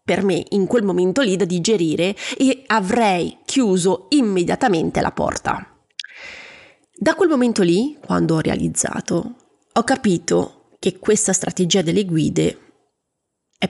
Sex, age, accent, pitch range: female, 30-49, native, 175-225 Hz